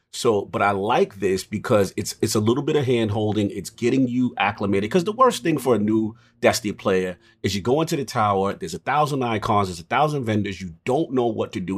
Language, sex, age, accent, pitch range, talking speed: English, male, 30-49, American, 105-140 Hz, 240 wpm